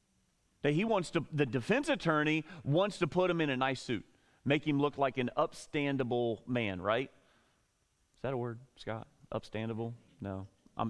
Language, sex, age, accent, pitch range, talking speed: English, male, 30-49, American, 110-150 Hz, 165 wpm